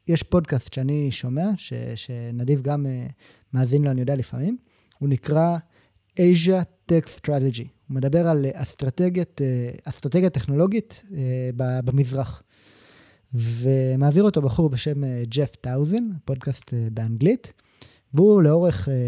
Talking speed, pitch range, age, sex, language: 100 wpm, 125-170 Hz, 20-39, male, Hebrew